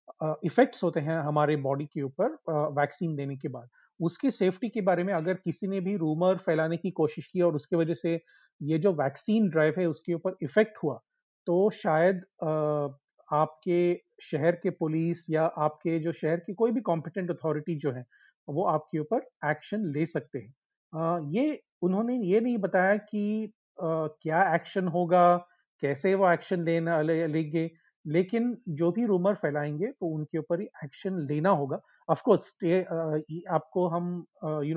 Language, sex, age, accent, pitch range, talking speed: Hindi, male, 40-59, native, 150-185 Hz, 170 wpm